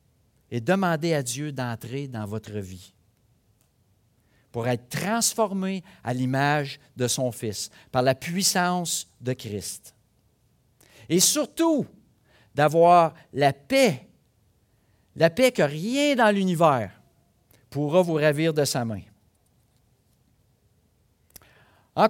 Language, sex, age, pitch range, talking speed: French, male, 50-69, 115-165 Hz, 105 wpm